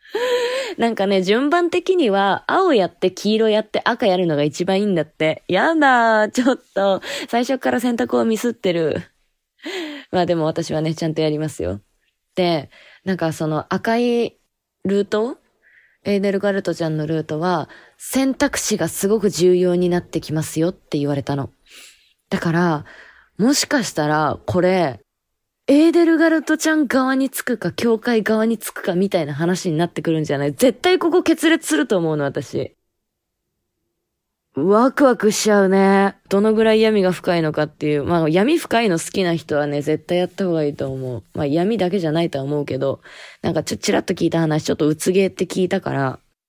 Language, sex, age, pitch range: Japanese, female, 20-39, 155-225 Hz